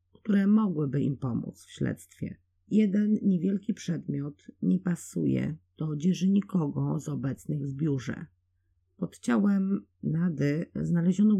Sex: female